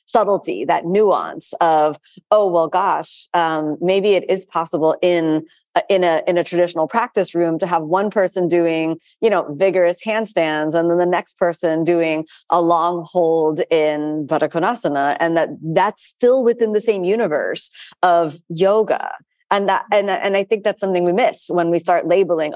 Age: 30-49